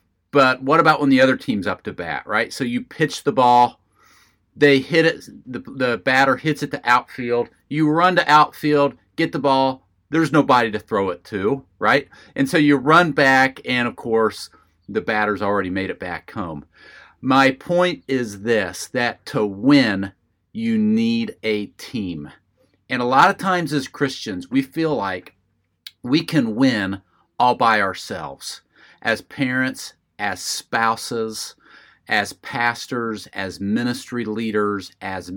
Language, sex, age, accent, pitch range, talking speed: English, male, 40-59, American, 115-155 Hz, 155 wpm